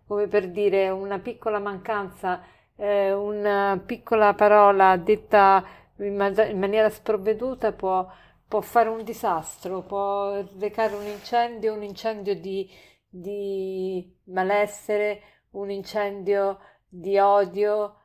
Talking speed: 110 wpm